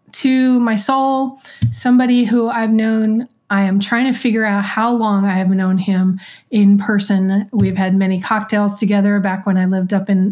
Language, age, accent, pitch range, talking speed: English, 30-49, American, 200-245 Hz, 185 wpm